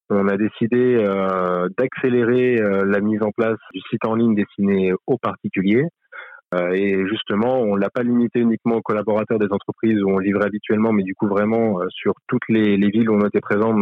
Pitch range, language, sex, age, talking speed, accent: 100-115 Hz, French, male, 20-39, 205 wpm, French